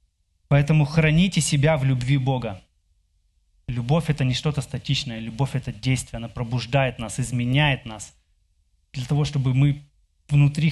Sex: male